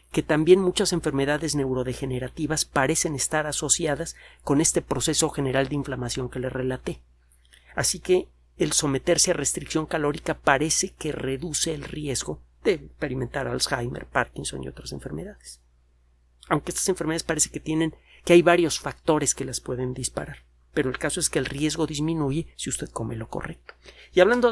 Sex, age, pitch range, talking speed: male, 40-59, 130-175 Hz, 160 wpm